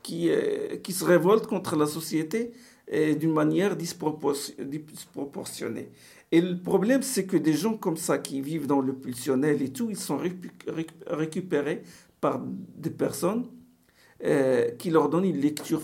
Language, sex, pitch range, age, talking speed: French, male, 150-195 Hz, 50-69, 160 wpm